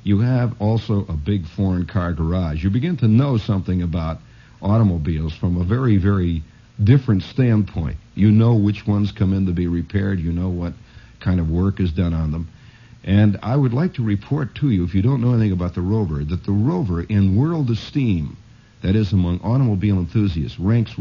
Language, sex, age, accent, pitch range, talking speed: English, male, 60-79, American, 90-120 Hz, 195 wpm